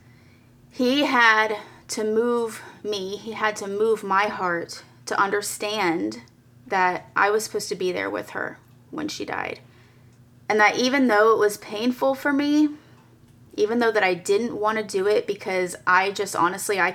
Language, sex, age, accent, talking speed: English, female, 30-49, American, 170 wpm